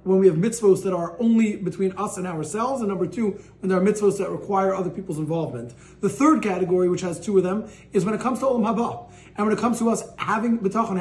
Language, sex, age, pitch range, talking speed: English, male, 30-49, 185-220 Hz, 250 wpm